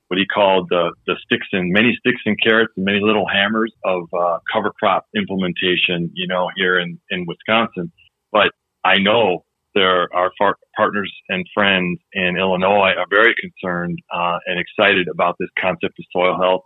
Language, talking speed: English, 175 wpm